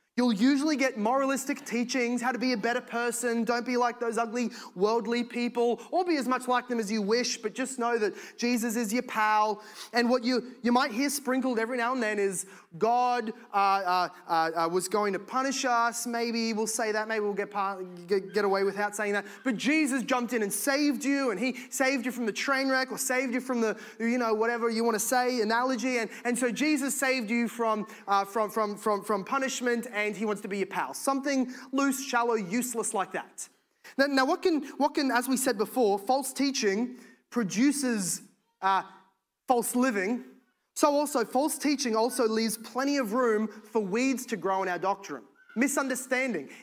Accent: Australian